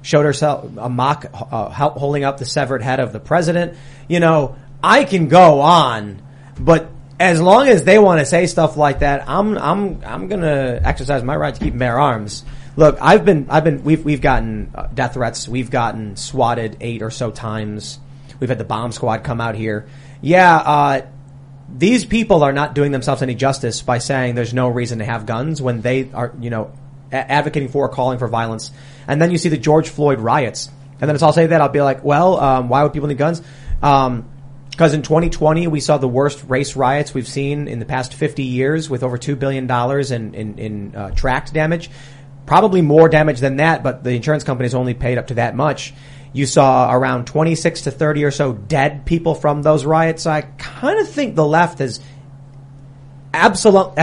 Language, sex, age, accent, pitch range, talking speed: English, male, 30-49, American, 130-155 Hz, 205 wpm